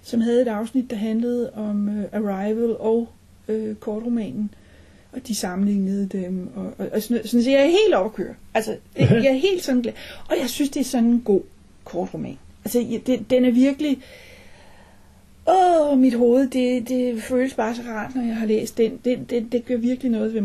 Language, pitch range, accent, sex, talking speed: Danish, 200-255 Hz, native, female, 205 wpm